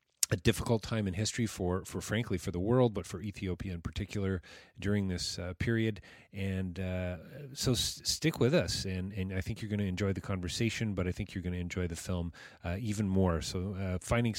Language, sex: English, male